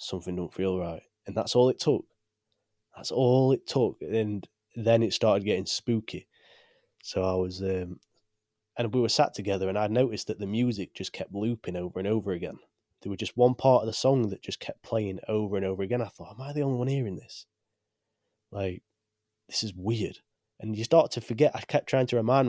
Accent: British